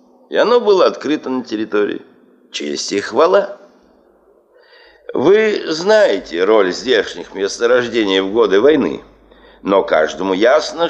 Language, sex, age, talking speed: Russian, male, 60-79, 110 wpm